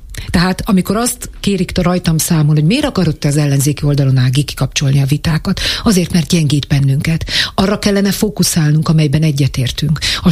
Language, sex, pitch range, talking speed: Hungarian, female, 145-180 Hz, 155 wpm